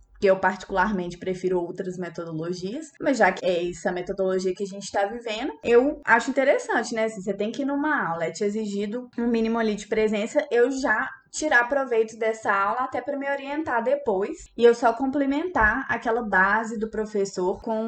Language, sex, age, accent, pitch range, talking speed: Portuguese, female, 20-39, Brazilian, 185-240 Hz, 190 wpm